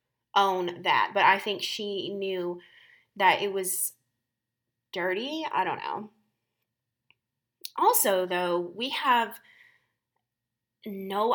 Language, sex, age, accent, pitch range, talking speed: English, female, 20-39, American, 185-250 Hz, 100 wpm